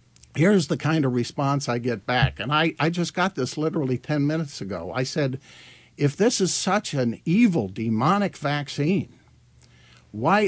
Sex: male